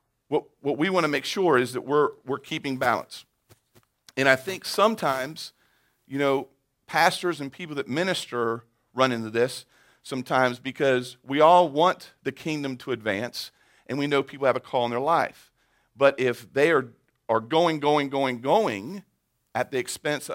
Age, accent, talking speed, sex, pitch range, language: 40-59, American, 170 wpm, male, 110-140 Hz, English